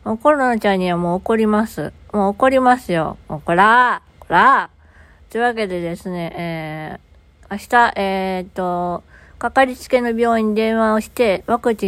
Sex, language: female, Japanese